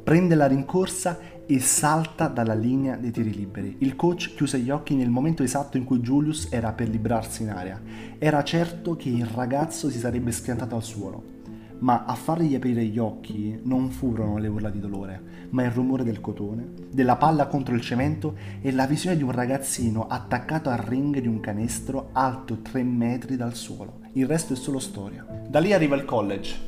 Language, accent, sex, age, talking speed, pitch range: Italian, native, male, 30-49, 190 wpm, 110-145 Hz